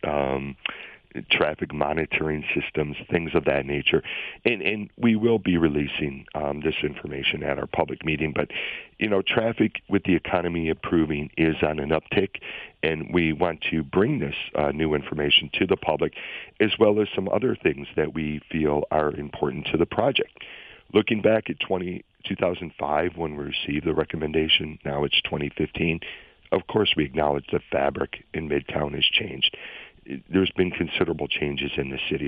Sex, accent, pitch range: male, American, 75-85 Hz